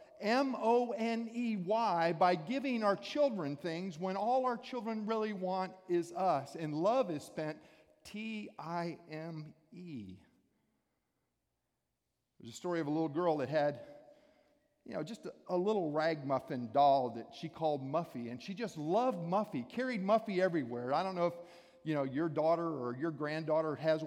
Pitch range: 160-230 Hz